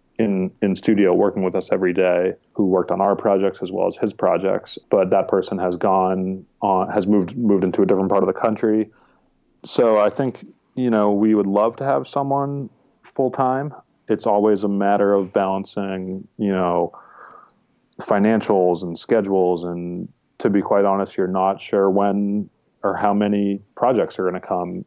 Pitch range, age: 95-105 Hz, 30-49